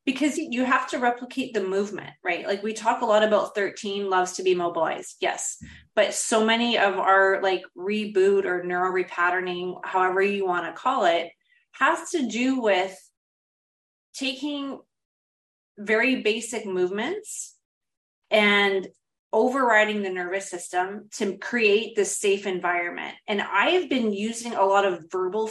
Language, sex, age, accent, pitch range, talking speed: English, female, 30-49, American, 190-235 Hz, 150 wpm